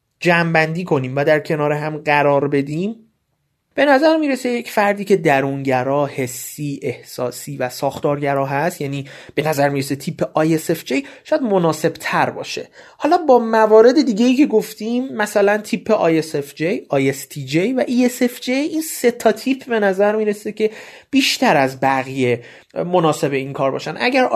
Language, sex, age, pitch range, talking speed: Persian, male, 30-49, 140-210 Hz, 140 wpm